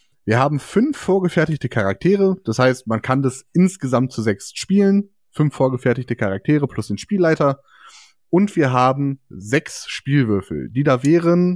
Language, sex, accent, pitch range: German, male, German, 125-175 Hz